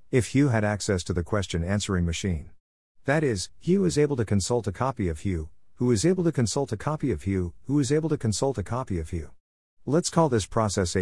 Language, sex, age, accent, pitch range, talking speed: English, male, 50-69, American, 85-120 Hz, 225 wpm